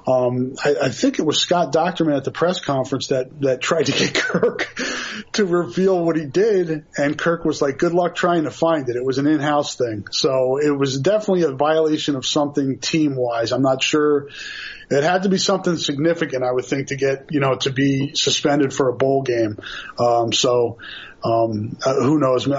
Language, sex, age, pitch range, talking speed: English, male, 30-49, 130-160 Hz, 200 wpm